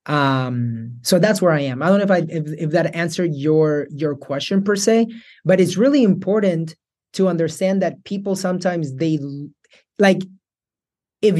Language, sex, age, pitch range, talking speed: English, male, 30-49, 155-195 Hz, 170 wpm